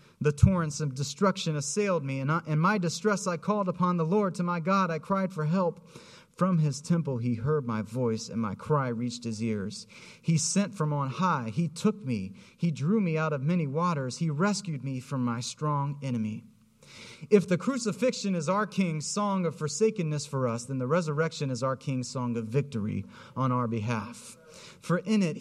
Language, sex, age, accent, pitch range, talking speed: English, male, 30-49, American, 135-185 Hz, 195 wpm